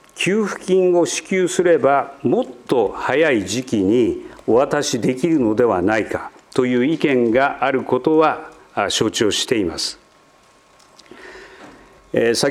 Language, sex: Japanese, male